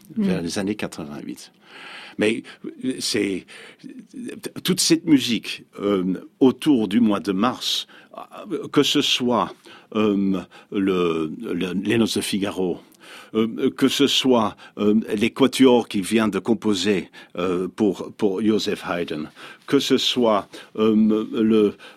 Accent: French